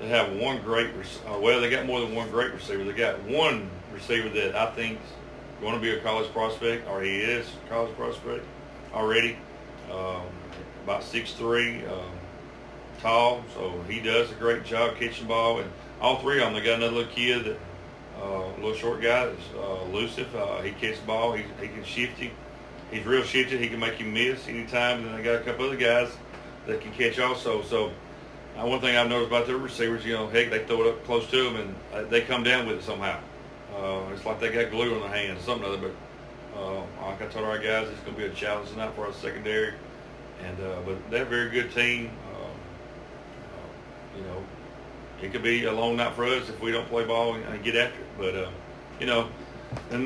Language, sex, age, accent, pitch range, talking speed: English, male, 40-59, American, 105-120 Hz, 220 wpm